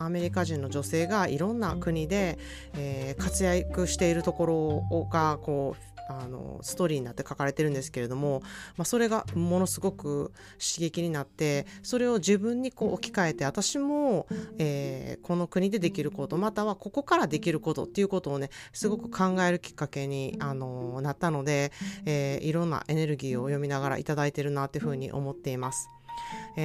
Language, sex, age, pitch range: Japanese, female, 30-49, 140-210 Hz